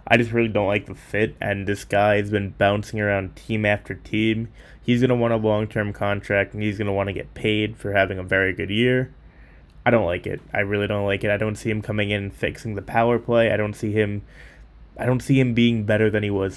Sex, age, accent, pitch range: male, 10-29, American, 95-110 Hz